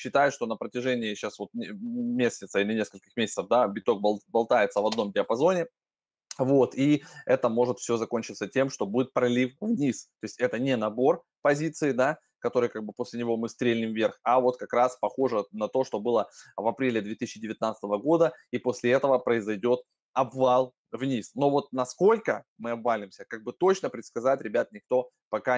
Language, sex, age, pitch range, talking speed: Russian, male, 20-39, 115-145 Hz, 170 wpm